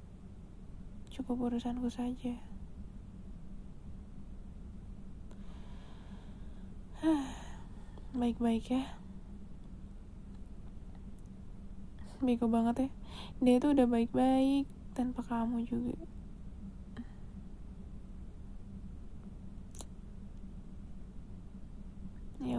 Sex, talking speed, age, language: female, 40 wpm, 20-39, Indonesian